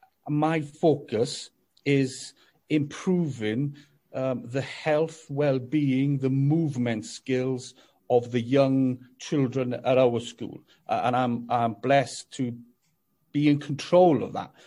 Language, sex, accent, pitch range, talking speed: English, male, British, 130-155 Hz, 120 wpm